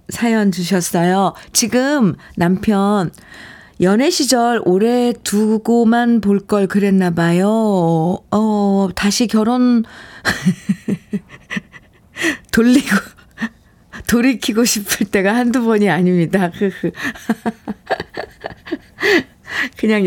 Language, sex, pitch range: Korean, female, 180-235 Hz